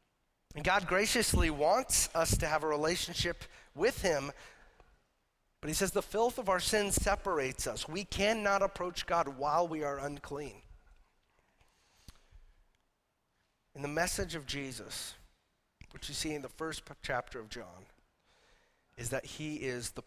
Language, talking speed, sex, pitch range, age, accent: English, 145 wpm, male, 130-175 Hz, 30-49, American